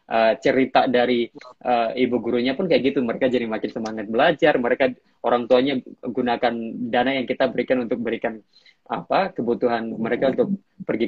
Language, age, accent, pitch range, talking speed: Indonesian, 20-39, native, 115-135 Hz, 155 wpm